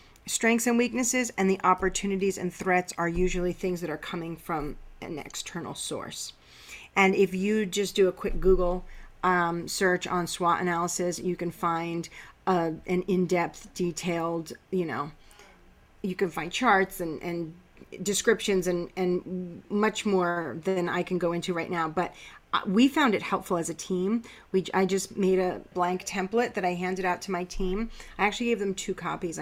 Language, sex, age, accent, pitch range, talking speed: English, female, 40-59, American, 175-195 Hz, 175 wpm